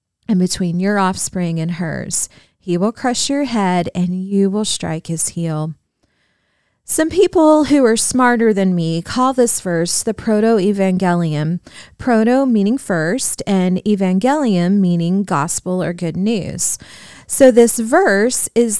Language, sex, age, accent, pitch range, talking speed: English, female, 30-49, American, 185-265 Hz, 135 wpm